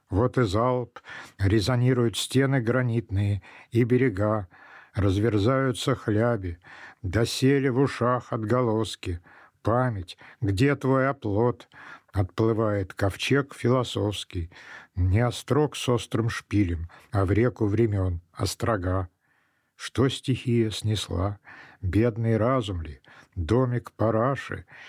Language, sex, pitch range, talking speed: Russian, male, 105-125 Hz, 95 wpm